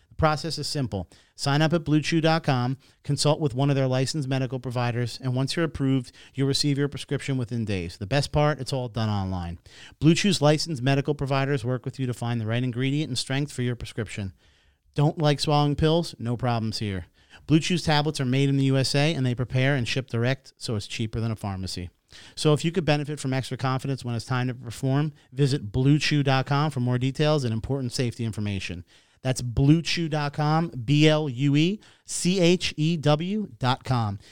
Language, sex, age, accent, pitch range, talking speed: English, male, 40-59, American, 120-150 Hz, 175 wpm